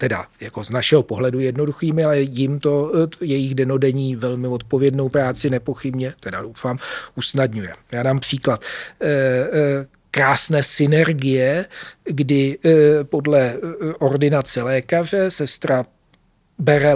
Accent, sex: native, male